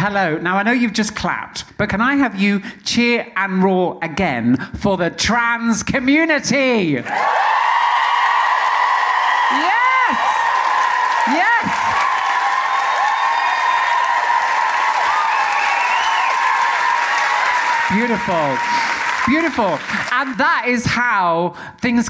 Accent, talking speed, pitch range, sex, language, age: British, 80 wpm, 155-240 Hz, male, English, 50-69